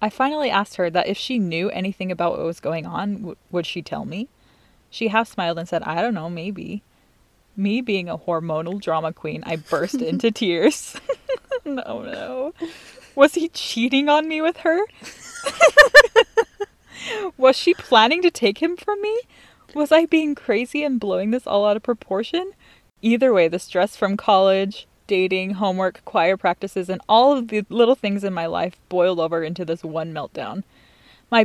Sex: female